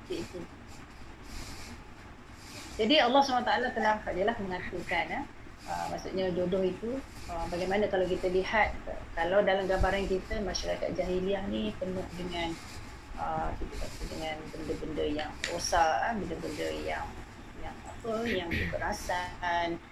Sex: female